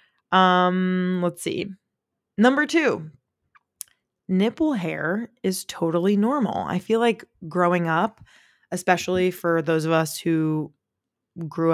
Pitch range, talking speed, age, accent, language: 160-185 Hz, 115 wpm, 20-39, American, English